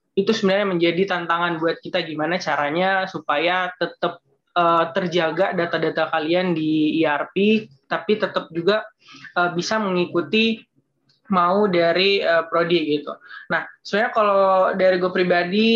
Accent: native